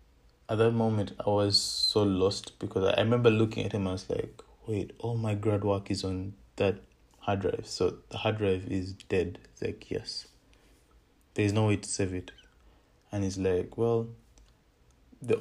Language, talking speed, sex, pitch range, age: English, 175 wpm, male, 95-110 Hz, 20-39